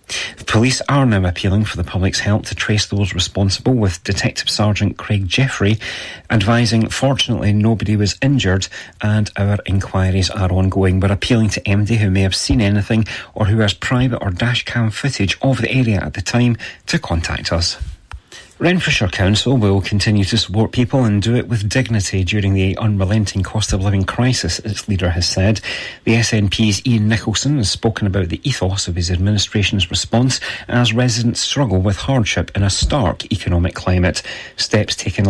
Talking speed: 175 wpm